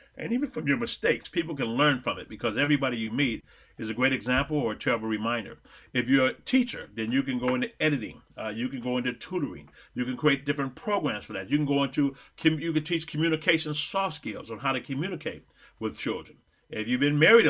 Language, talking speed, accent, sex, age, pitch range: English, 225 wpm, American, male, 40-59, 120-155 Hz